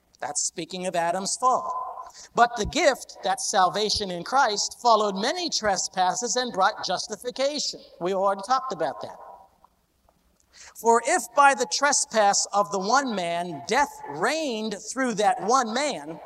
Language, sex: English, male